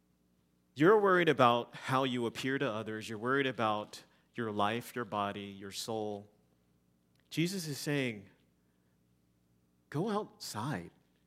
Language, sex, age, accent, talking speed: English, male, 40-59, American, 115 wpm